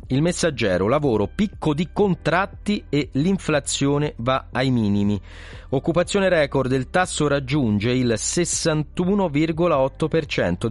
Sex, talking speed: male, 100 wpm